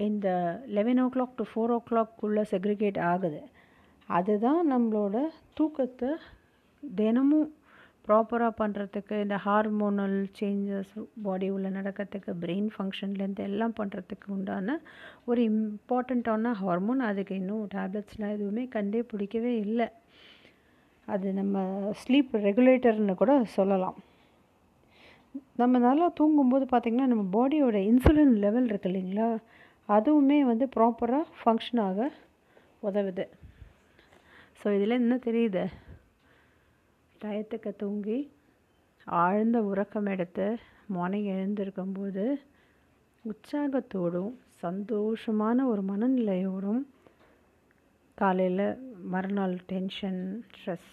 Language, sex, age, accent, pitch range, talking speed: Tamil, female, 50-69, native, 200-245 Hz, 95 wpm